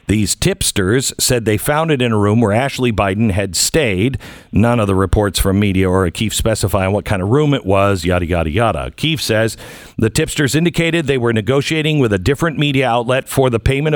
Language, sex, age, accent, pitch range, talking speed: English, male, 50-69, American, 105-135 Hz, 205 wpm